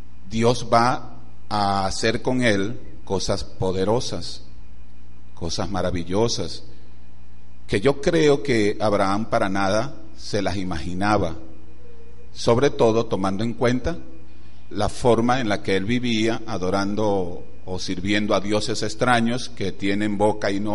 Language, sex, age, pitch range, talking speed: Spanish, male, 40-59, 85-115 Hz, 125 wpm